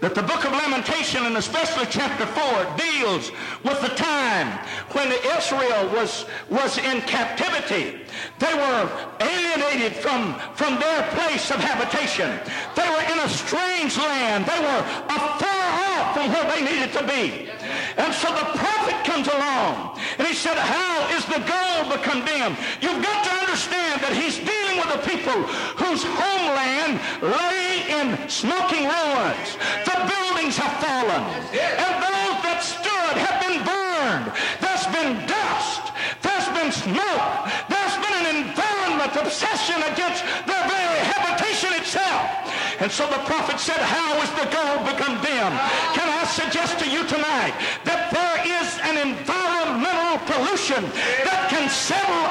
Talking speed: 145 wpm